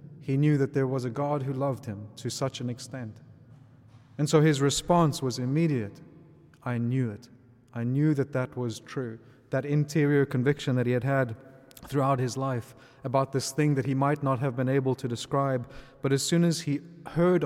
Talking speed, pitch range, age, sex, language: 195 wpm, 125-145 Hz, 30-49, male, English